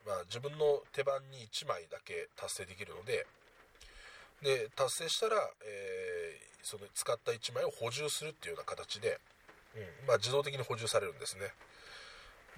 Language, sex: Japanese, male